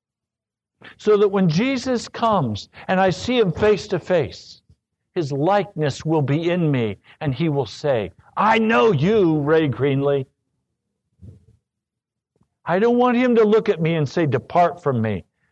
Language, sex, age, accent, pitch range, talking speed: English, male, 60-79, American, 145-210 Hz, 155 wpm